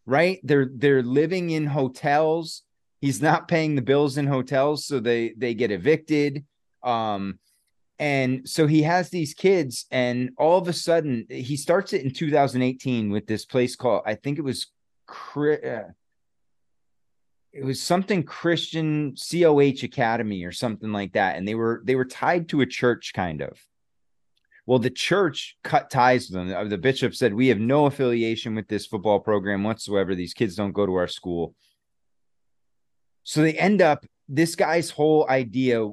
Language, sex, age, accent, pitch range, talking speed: English, male, 30-49, American, 110-150 Hz, 165 wpm